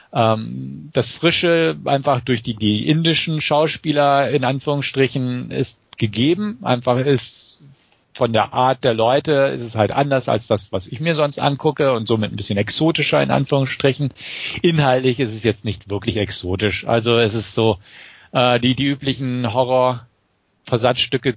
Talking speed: 150 wpm